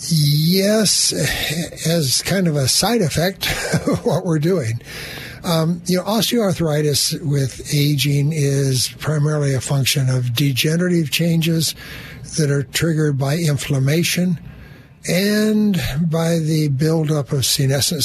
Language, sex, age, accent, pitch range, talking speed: English, male, 60-79, American, 135-150 Hz, 115 wpm